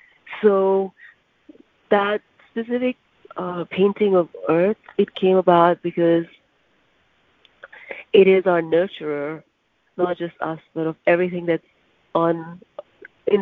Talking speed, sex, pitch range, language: 105 wpm, female, 175-205 Hz, English